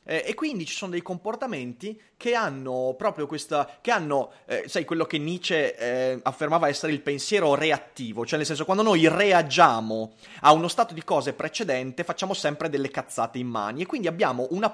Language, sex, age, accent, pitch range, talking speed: Italian, male, 30-49, native, 140-200 Hz, 185 wpm